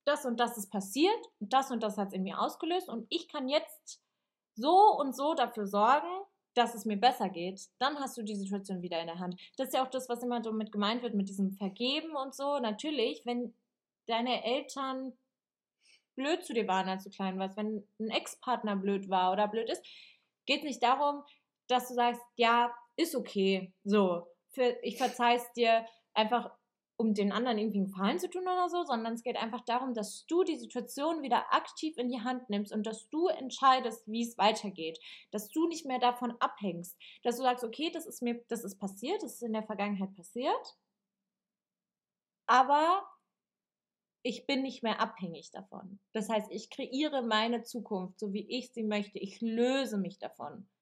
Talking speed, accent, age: 190 wpm, German, 20-39